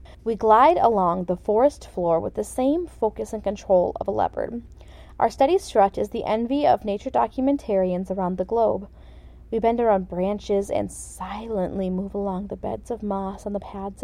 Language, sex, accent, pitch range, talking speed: English, female, American, 200-260 Hz, 180 wpm